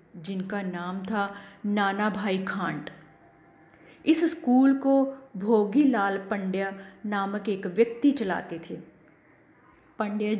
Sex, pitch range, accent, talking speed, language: female, 190-240 Hz, native, 105 wpm, Hindi